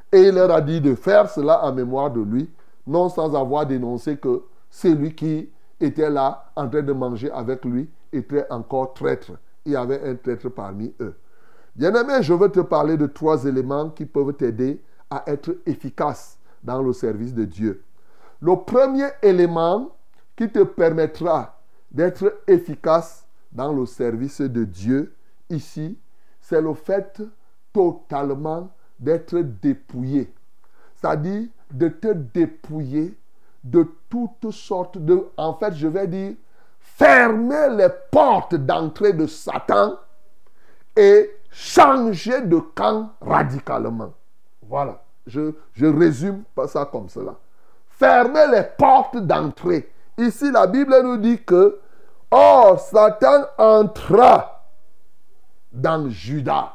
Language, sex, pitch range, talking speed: French, male, 140-205 Hz, 130 wpm